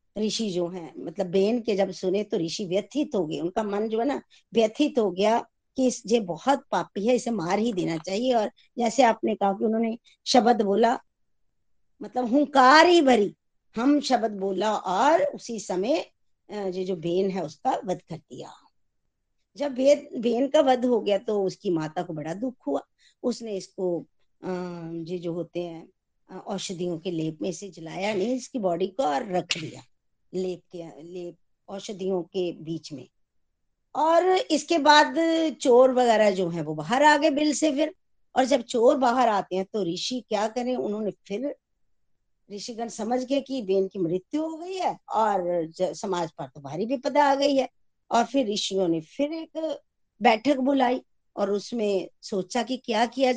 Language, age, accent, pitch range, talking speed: Hindi, 50-69, native, 185-260 Hz, 175 wpm